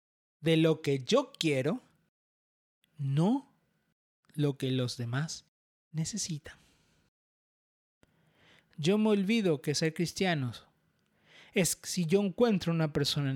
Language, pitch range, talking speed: Spanish, 135-210 Hz, 110 wpm